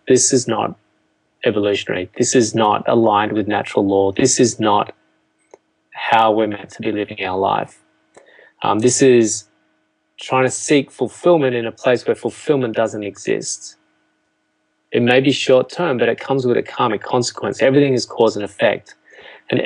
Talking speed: 165 wpm